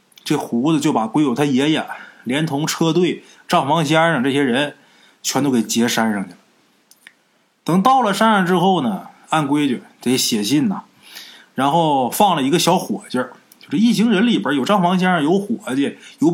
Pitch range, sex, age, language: 160-235 Hz, male, 20-39, Chinese